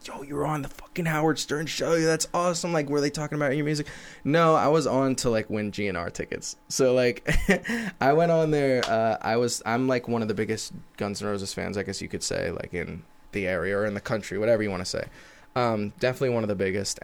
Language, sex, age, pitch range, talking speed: English, male, 20-39, 105-140 Hz, 245 wpm